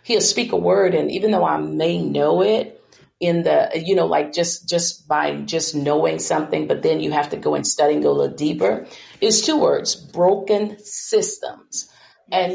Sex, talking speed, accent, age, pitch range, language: female, 195 wpm, American, 40-59, 150-210 Hz, English